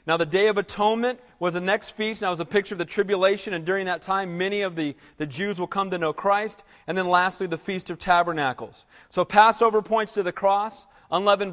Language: English